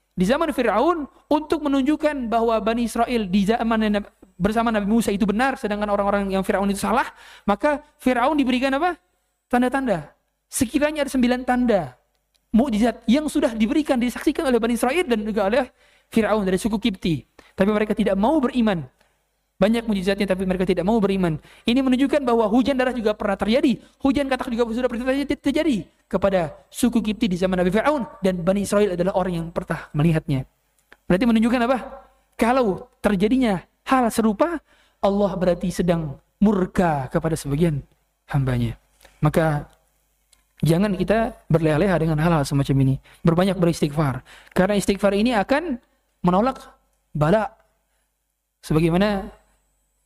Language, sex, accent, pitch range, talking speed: Indonesian, male, native, 185-255 Hz, 140 wpm